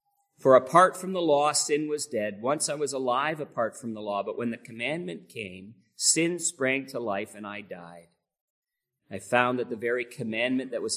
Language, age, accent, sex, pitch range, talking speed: English, 40-59, American, male, 100-140 Hz, 195 wpm